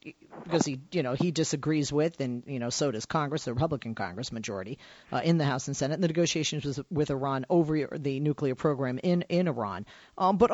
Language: English